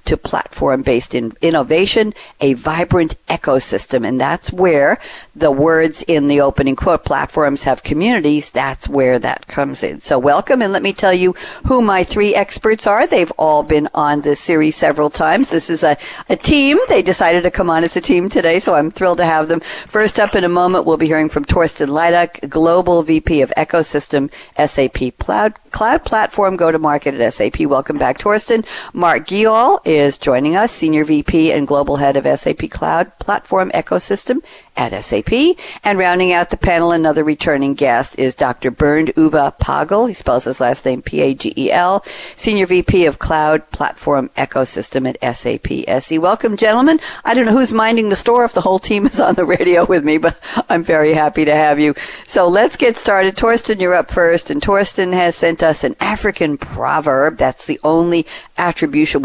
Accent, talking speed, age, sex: American, 185 wpm, 50-69, female